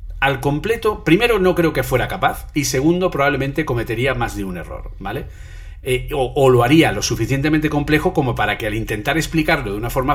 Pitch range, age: 110-160 Hz, 40-59